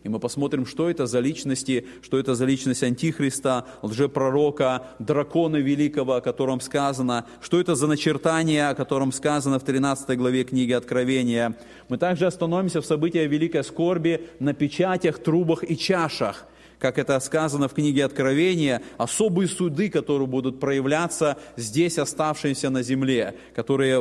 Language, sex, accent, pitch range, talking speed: Russian, male, native, 130-165 Hz, 145 wpm